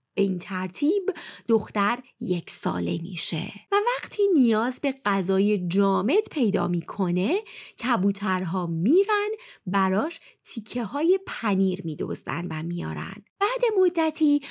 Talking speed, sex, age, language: 105 wpm, female, 30-49, Persian